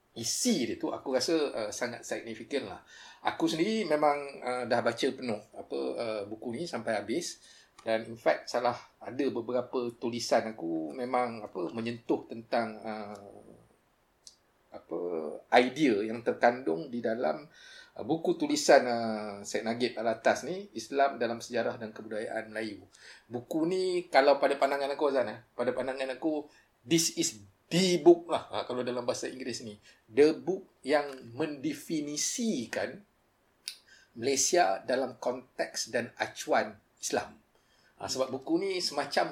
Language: Malay